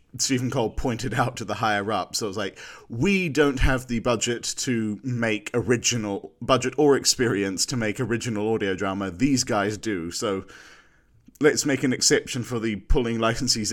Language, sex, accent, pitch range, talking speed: English, male, British, 105-130 Hz, 170 wpm